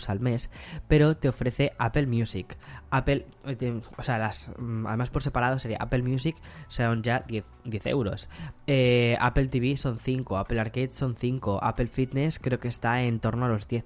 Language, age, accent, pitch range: Spanish, 10-29, Spanish, 110-130 Hz